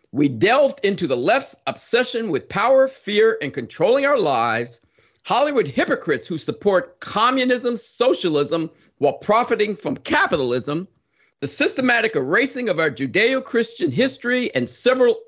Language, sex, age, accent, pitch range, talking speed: English, male, 50-69, American, 160-265 Hz, 125 wpm